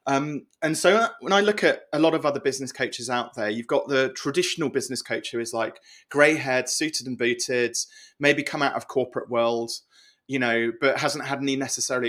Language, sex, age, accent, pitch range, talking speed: English, male, 30-49, British, 120-155 Hz, 210 wpm